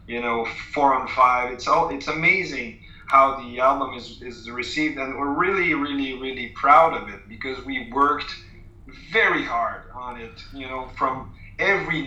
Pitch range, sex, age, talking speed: 120-150 Hz, male, 30-49, 170 wpm